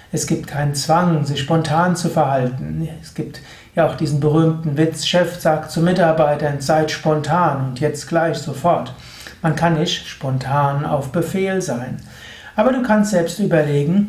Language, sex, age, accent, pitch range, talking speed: German, male, 60-79, German, 150-185 Hz, 160 wpm